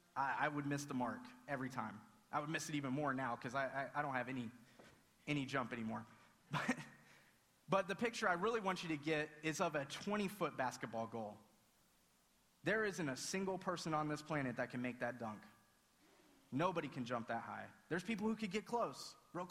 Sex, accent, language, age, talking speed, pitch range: male, American, English, 30-49, 200 wpm, 135-180 Hz